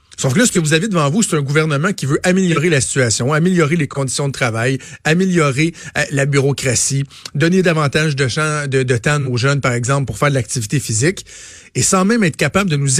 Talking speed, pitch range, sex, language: 210 wpm, 130-170 Hz, male, French